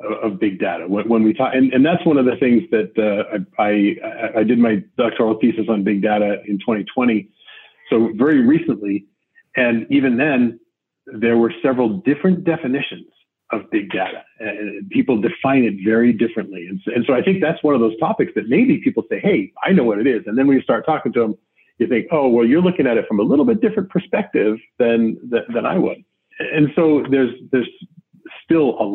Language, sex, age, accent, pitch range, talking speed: English, male, 40-59, American, 110-140 Hz, 210 wpm